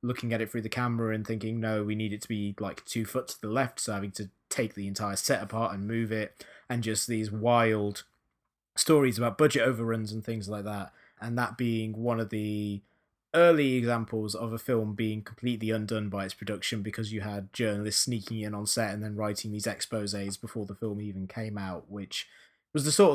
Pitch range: 100-120 Hz